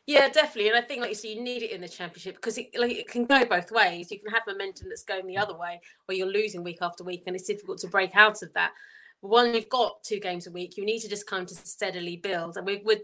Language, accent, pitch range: English, British, 180-215 Hz